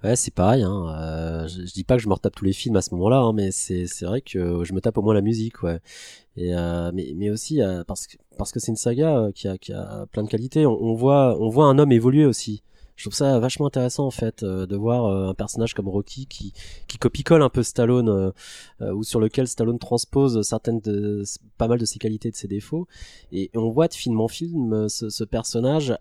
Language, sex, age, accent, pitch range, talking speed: French, male, 20-39, French, 100-125 Hz, 255 wpm